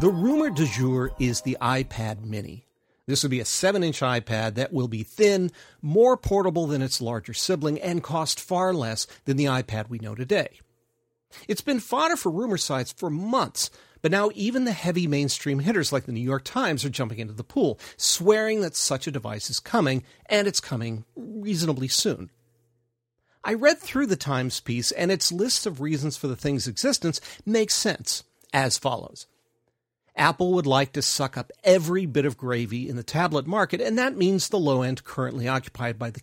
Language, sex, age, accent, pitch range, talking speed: English, male, 40-59, American, 120-180 Hz, 185 wpm